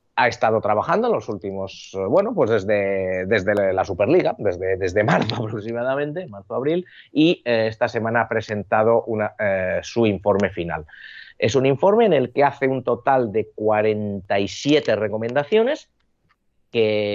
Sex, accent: male, Spanish